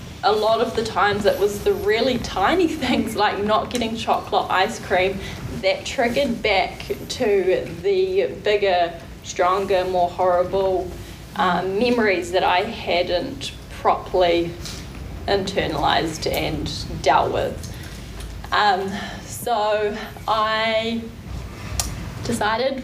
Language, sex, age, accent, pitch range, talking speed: English, female, 10-29, Australian, 190-230 Hz, 105 wpm